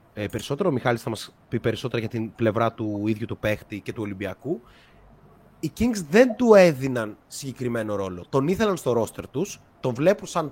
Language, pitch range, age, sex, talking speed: Greek, 115-185 Hz, 30-49, male, 190 wpm